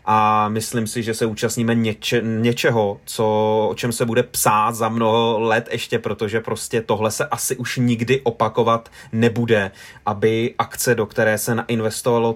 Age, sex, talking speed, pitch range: 30-49, male, 150 wpm, 110-120 Hz